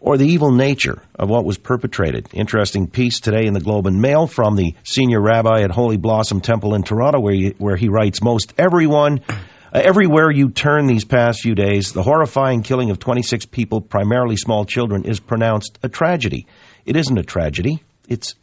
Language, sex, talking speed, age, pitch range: English, male, 190 wpm, 50-69, 100-125 Hz